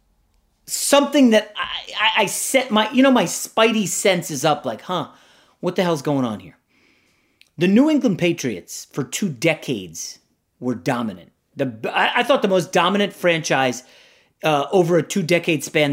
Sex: male